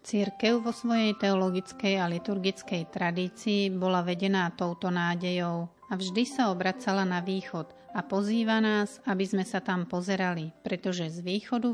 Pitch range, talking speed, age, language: 180-210 Hz, 145 wpm, 40-59, Slovak